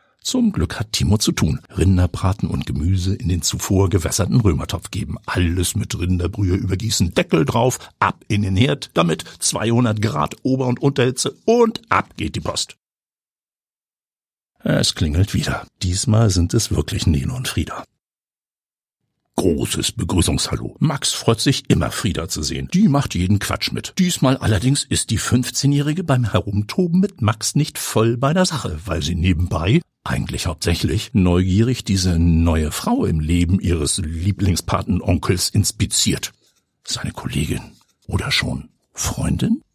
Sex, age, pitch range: male, 60-79, 95-130 Hz